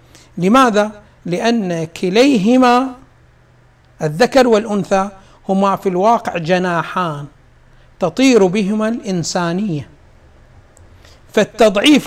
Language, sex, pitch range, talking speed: Arabic, male, 175-235 Hz, 65 wpm